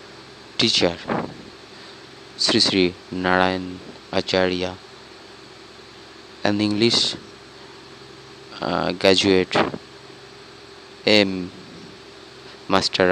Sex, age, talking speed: male, 30-49, 50 wpm